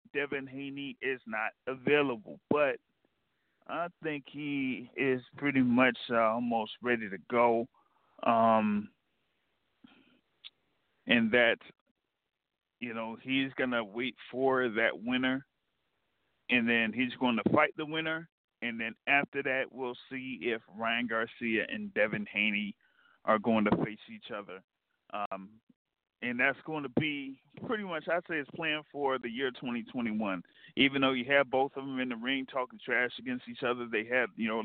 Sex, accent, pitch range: male, American, 115-150 Hz